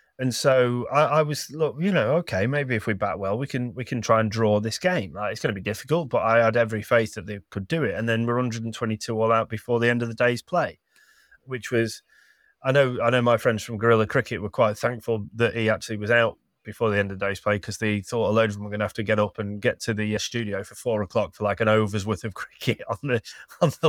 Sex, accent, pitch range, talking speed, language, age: male, British, 110-140 Hz, 280 wpm, English, 30-49